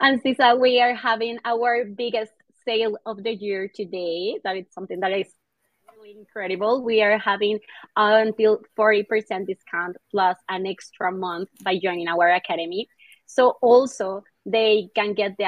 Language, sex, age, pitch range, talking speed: English, female, 20-39, 195-240 Hz, 145 wpm